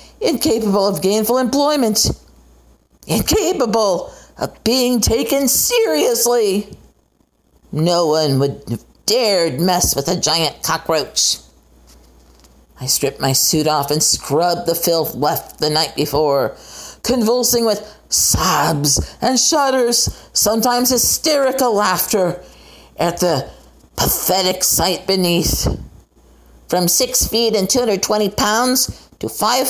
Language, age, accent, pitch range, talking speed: English, 50-69, American, 160-240 Hz, 105 wpm